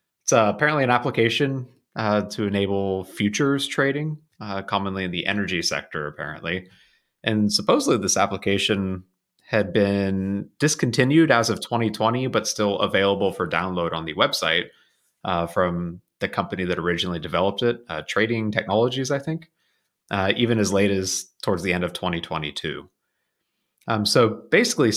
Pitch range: 95-135 Hz